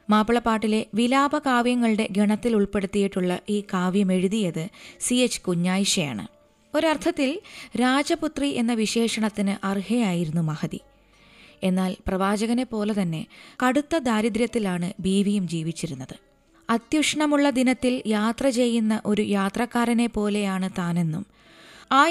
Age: 20-39